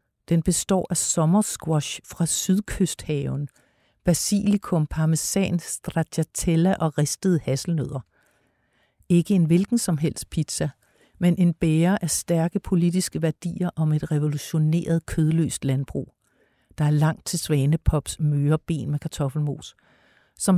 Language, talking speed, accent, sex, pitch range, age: Danish, 115 wpm, native, female, 150-180 Hz, 60-79